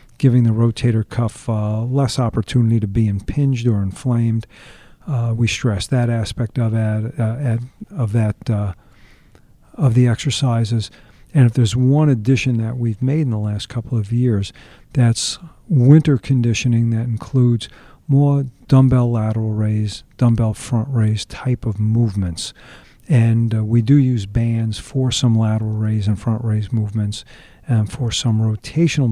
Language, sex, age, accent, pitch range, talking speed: English, male, 50-69, American, 110-130 Hz, 140 wpm